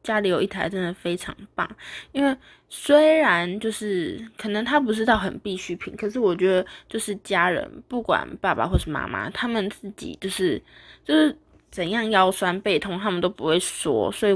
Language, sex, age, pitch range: Chinese, female, 20-39, 185-235 Hz